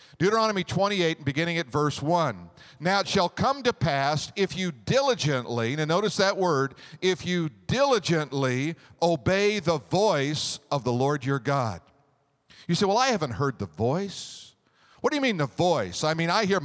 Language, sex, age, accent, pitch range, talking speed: English, male, 50-69, American, 155-200 Hz, 175 wpm